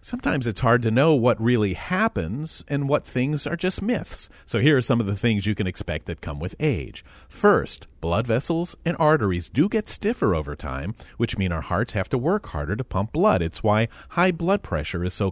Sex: male